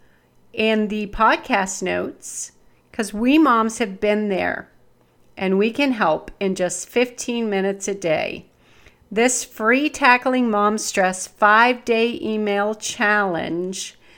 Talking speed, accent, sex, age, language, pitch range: 120 wpm, American, female, 40-59, English, 195-245 Hz